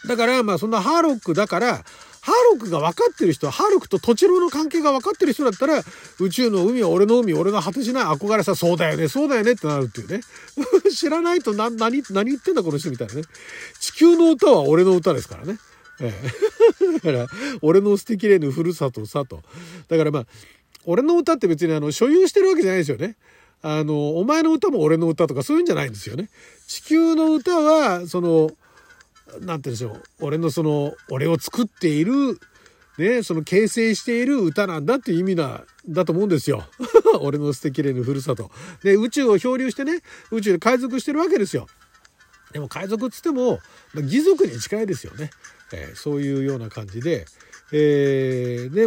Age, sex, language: 40-59, male, Japanese